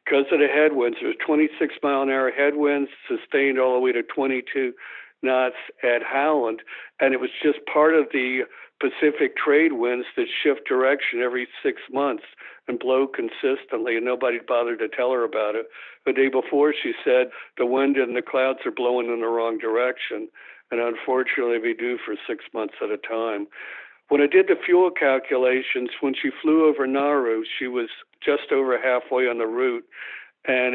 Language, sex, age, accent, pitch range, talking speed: English, male, 60-79, American, 125-155 Hz, 175 wpm